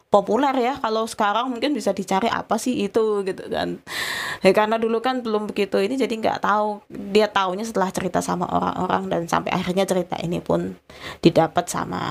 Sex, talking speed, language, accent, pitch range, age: female, 180 wpm, Indonesian, native, 180-220 Hz, 20-39